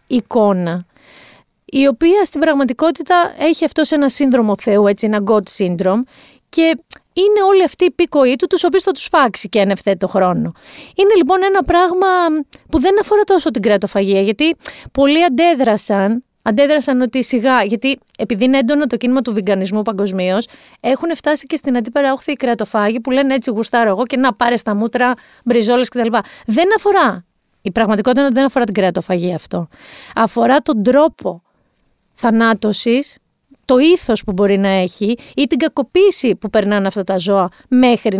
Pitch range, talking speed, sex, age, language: 210-295 Hz, 165 wpm, female, 30-49, Greek